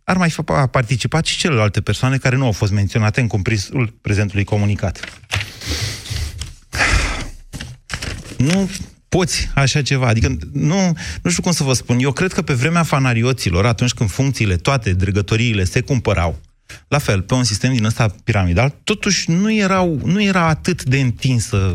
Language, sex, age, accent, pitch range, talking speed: Romanian, male, 30-49, native, 110-150 Hz, 155 wpm